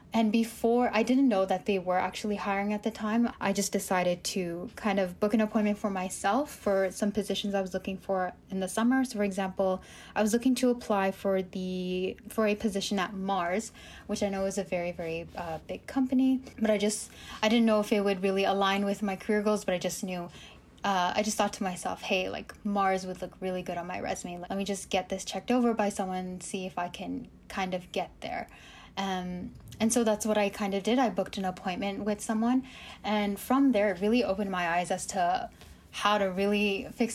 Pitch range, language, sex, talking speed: 185-215 Hz, English, female, 225 wpm